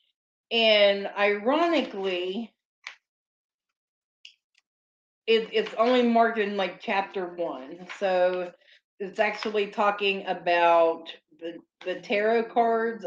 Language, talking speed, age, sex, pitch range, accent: English, 85 wpm, 40-59, female, 175-225 Hz, American